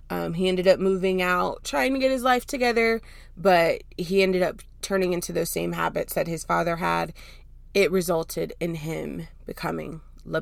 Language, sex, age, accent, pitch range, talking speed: English, female, 20-39, American, 165-210 Hz, 180 wpm